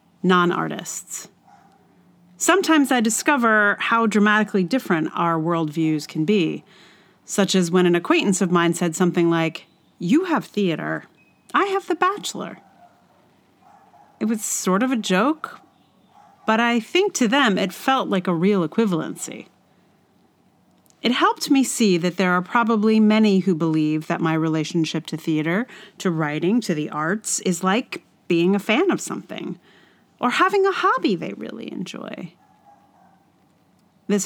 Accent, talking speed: American, 140 wpm